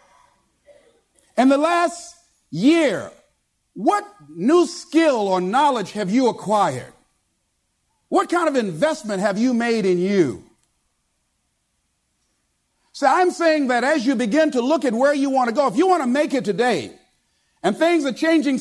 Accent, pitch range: American, 235-310 Hz